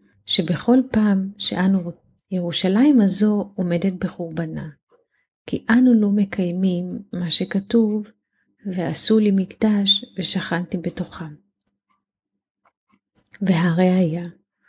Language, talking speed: Hebrew, 80 wpm